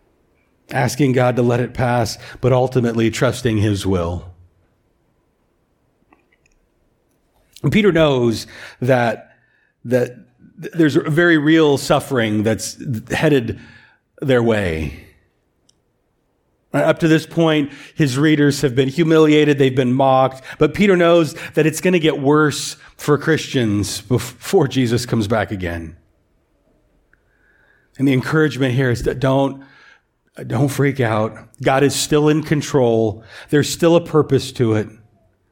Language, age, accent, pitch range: English, 40-59, American, 120-170 Hz